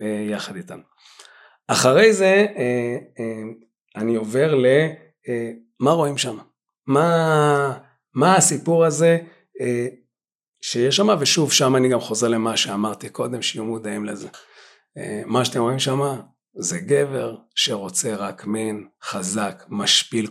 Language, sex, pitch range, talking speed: Hebrew, male, 115-160 Hz, 110 wpm